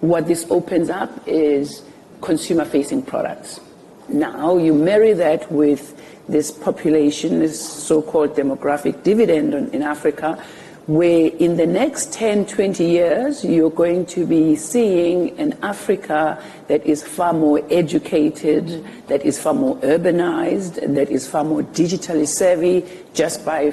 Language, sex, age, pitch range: English, female, 60-79, 155-200 Hz